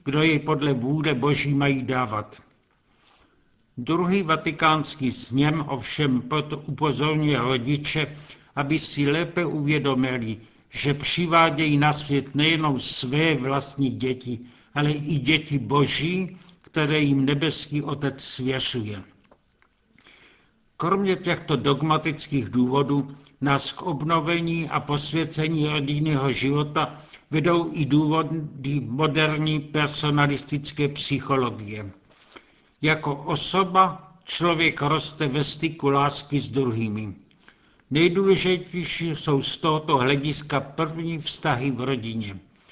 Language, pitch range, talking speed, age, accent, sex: Czech, 140-155 Hz, 100 wpm, 70-89, native, male